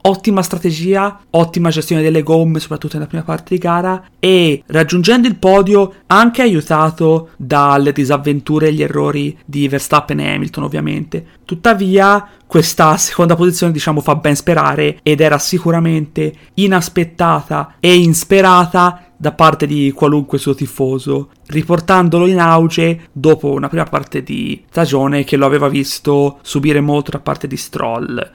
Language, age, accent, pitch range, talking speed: Italian, 30-49, native, 145-180 Hz, 140 wpm